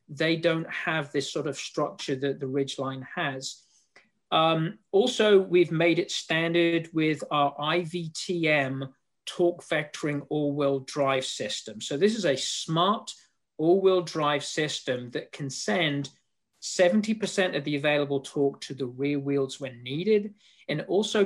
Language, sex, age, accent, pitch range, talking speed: English, male, 40-59, British, 140-190 Hz, 140 wpm